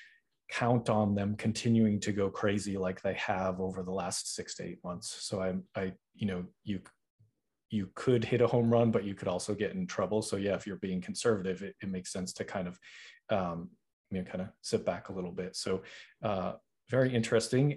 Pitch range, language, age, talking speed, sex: 105-120 Hz, English, 30-49, 215 wpm, male